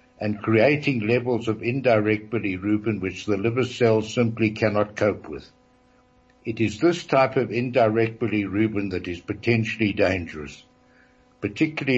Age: 60-79